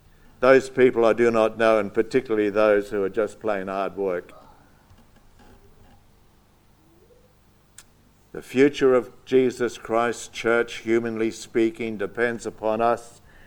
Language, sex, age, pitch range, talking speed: English, male, 60-79, 110-140 Hz, 115 wpm